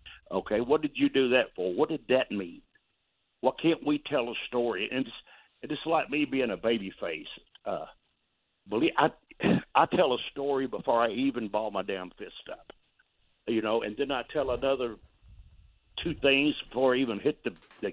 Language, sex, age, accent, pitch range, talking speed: English, male, 60-79, American, 105-135 Hz, 185 wpm